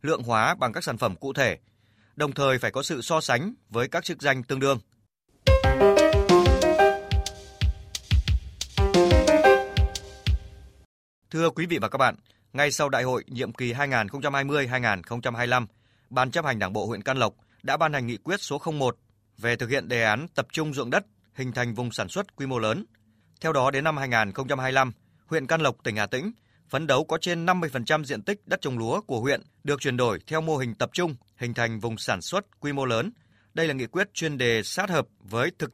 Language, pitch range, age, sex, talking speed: Vietnamese, 110-150 Hz, 20-39, male, 195 wpm